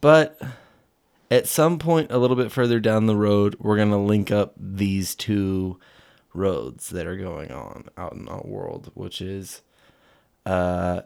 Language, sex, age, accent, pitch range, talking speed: English, male, 20-39, American, 95-110 Hz, 165 wpm